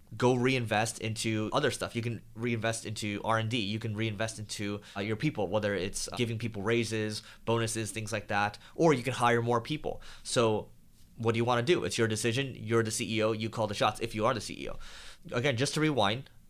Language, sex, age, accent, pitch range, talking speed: English, male, 20-39, American, 105-120 Hz, 210 wpm